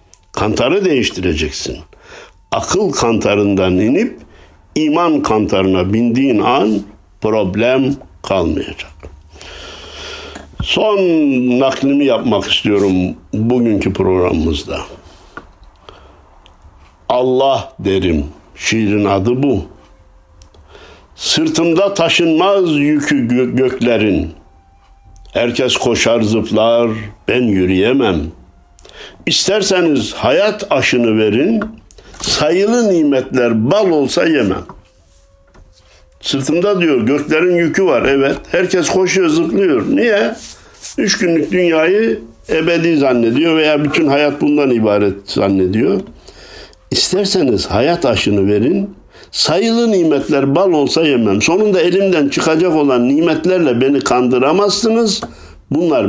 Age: 60-79